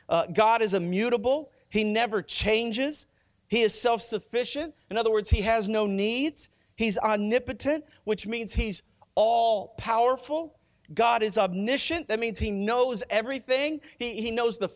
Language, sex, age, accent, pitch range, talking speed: English, male, 40-59, American, 210-265 Hz, 145 wpm